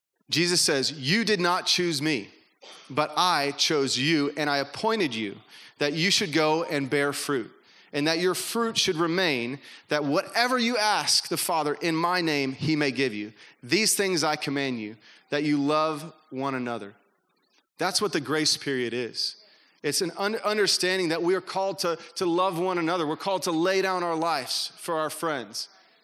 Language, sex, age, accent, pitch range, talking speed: English, male, 30-49, American, 150-200 Hz, 180 wpm